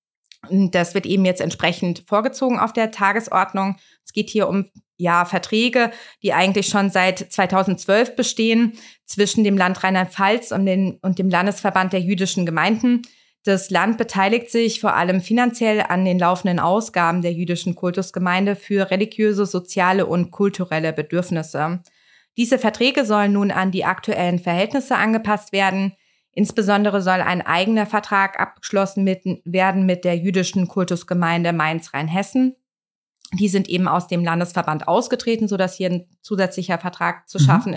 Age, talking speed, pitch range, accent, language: 20-39, 145 wpm, 180-210 Hz, German, German